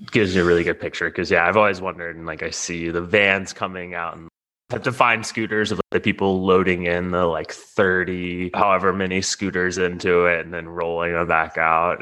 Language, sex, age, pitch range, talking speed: English, male, 20-39, 85-95 Hz, 215 wpm